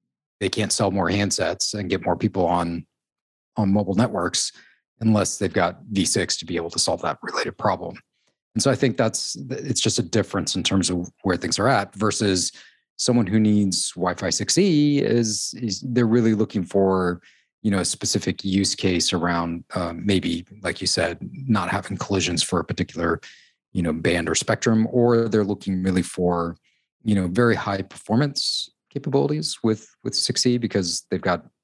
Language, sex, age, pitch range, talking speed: English, male, 30-49, 90-115 Hz, 180 wpm